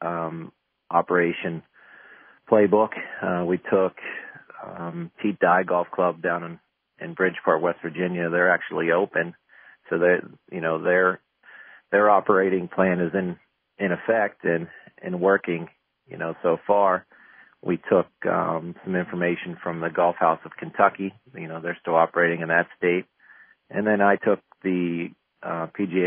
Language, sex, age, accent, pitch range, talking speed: English, male, 40-59, American, 85-95 Hz, 150 wpm